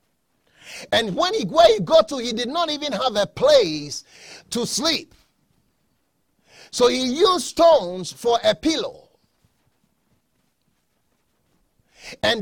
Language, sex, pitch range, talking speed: English, male, 230-320 Hz, 115 wpm